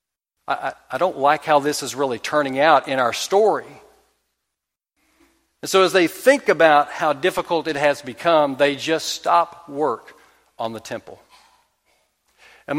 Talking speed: 150 wpm